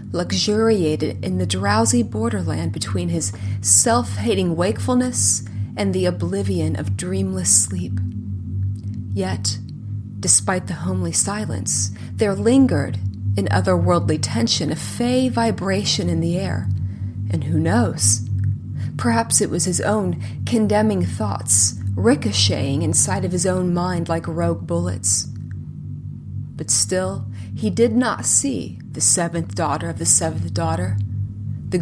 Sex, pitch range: female, 95-145 Hz